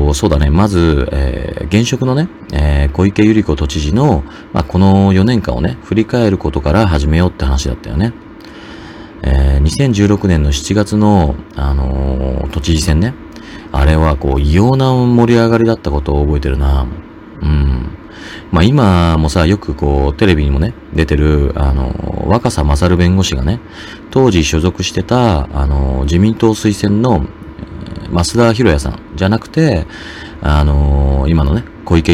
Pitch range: 70-100 Hz